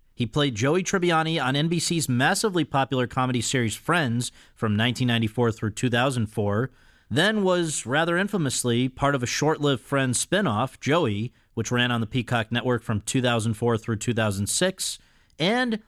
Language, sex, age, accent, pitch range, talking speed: English, male, 40-59, American, 115-150 Hz, 140 wpm